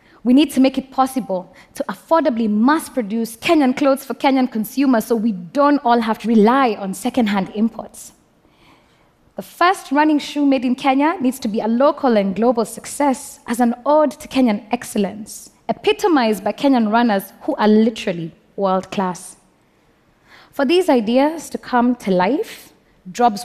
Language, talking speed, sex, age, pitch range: Russian, 155 wpm, female, 20-39, 190-255 Hz